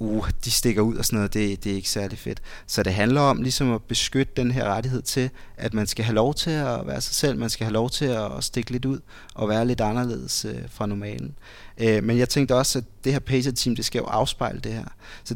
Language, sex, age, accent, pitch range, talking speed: Danish, male, 30-49, native, 105-125 Hz, 250 wpm